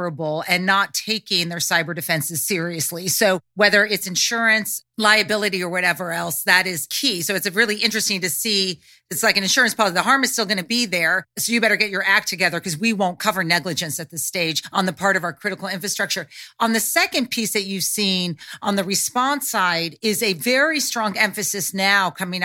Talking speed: 205 wpm